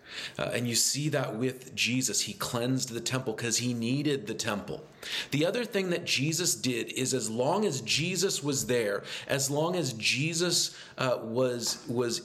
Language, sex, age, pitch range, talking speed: English, male, 40-59, 125-160 Hz, 175 wpm